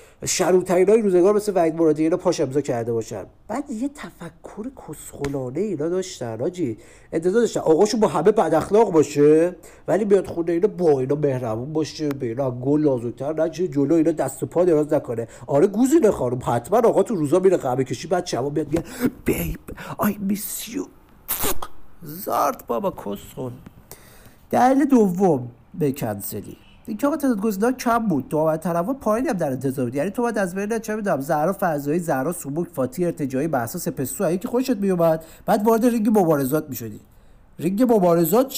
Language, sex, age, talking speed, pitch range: Persian, male, 50-69, 170 wpm, 140-220 Hz